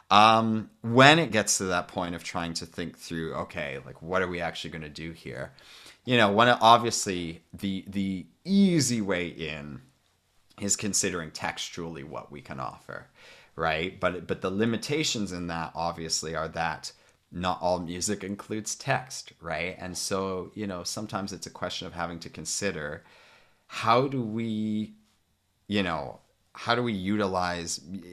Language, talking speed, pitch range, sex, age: English, 160 wpm, 85-105 Hz, male, 30-49